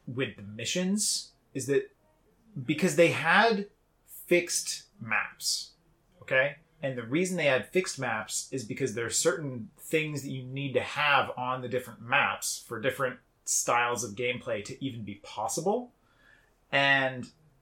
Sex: male